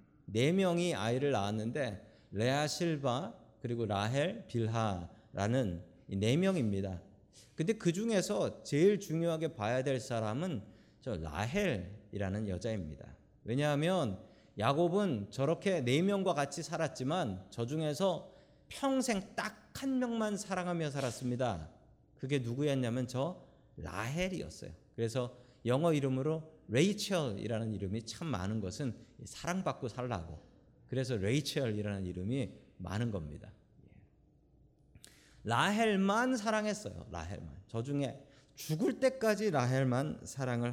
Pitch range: 110-175 Hz